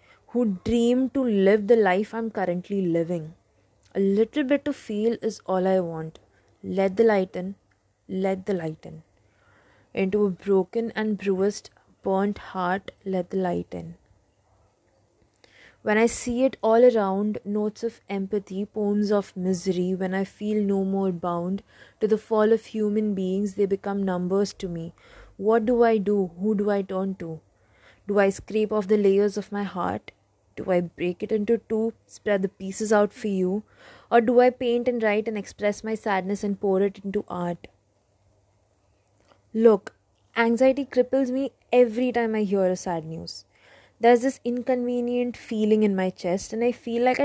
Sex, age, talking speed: female, 20-39, 170 wpm